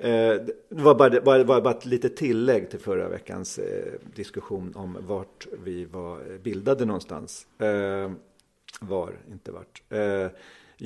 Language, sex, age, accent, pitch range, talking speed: Swedish, male, 40-59, native, 95-135 Hz, 135 wpm